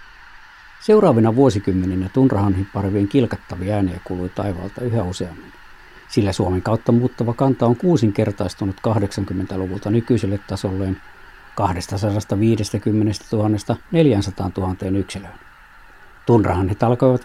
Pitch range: 100-135 Hz